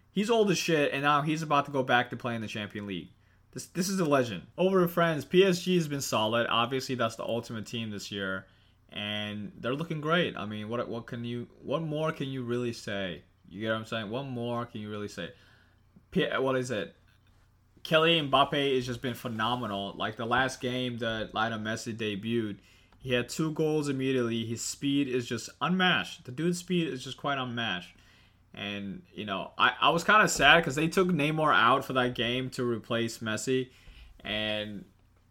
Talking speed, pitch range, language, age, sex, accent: 205 wpm, 105-135 Hz, English, 20-39, male, American